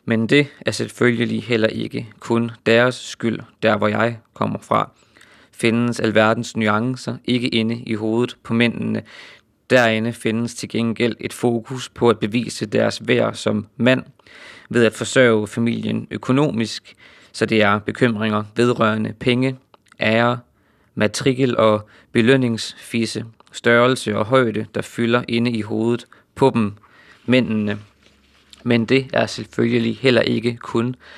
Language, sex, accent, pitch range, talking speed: Danish, male, native, 110-120 Hz, 135 wpm